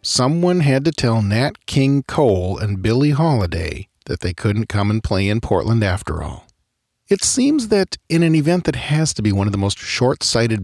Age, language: 40-59, English